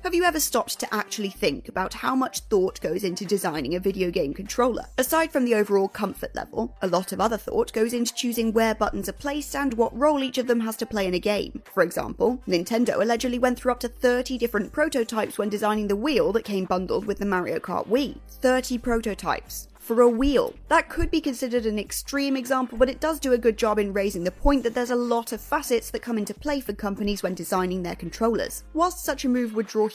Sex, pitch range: female, 210-265 Hz